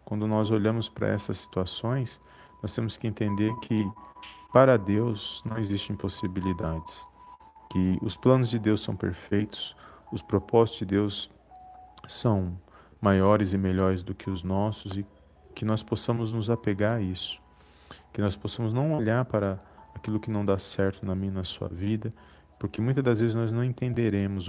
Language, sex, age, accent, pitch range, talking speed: Portuguese, male, 40-59, Brazilian, 95-115 Hz, 160 wpm